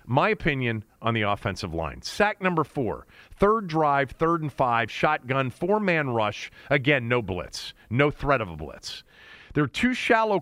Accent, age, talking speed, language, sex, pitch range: American, 40-59, 165 wpm, English, male, 120-175 Hz